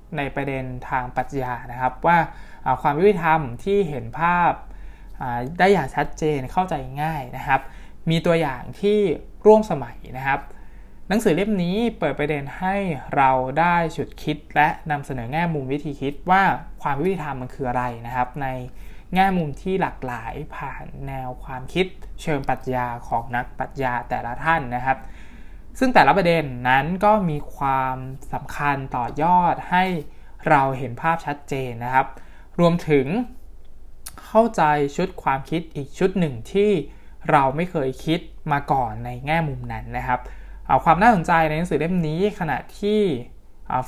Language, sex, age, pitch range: Thai, male, 20-39, 130-170 Hz